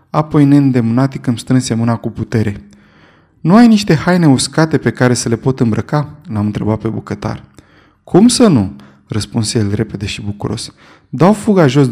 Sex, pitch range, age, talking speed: male, 115-150 Hz, 20-39, 165 wpm